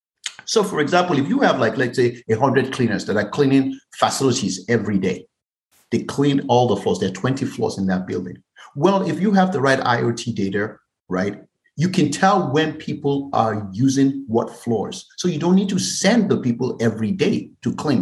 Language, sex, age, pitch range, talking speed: English, male, 50-69, 120-170 Hz, 195 wpm